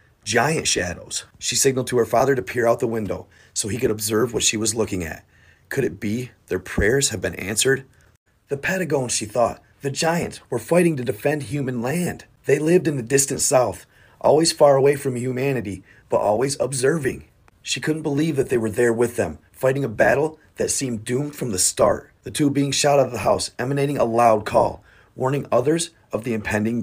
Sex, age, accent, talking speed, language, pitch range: male, 30-49, American, 200 wpm, English, 105-135 Hz